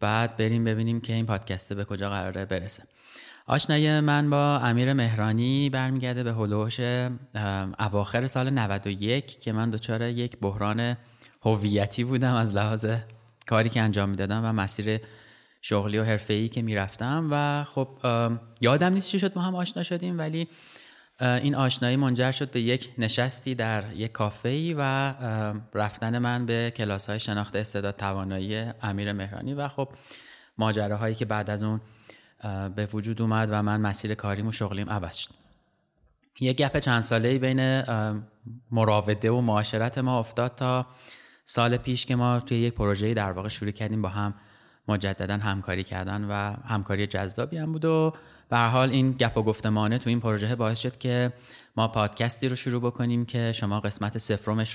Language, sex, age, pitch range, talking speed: Persian, male, 20-39, 105-125 Hz, 160 wpm